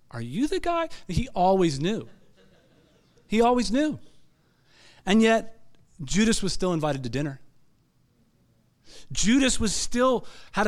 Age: 40-59